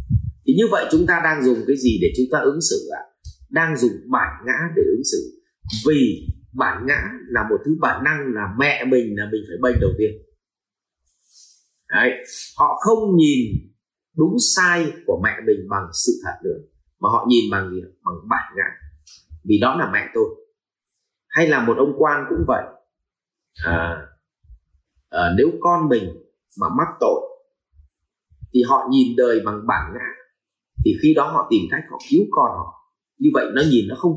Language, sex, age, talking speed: Vietnamese, male, 30-49, 170 wpm